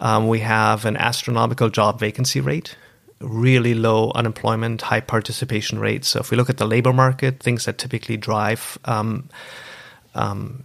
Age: 30-49